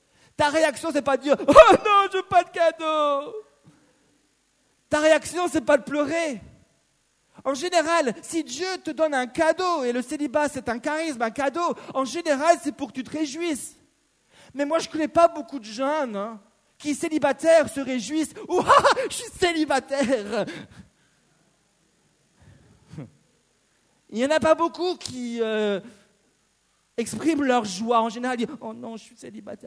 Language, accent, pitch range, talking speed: French, French, 235-315 Hz, 170 wpm